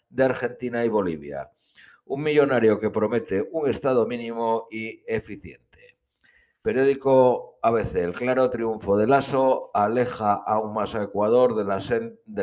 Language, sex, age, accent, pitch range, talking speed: Spanish, male, 60-79, Spanish, 105-130 Hz, 125 wpm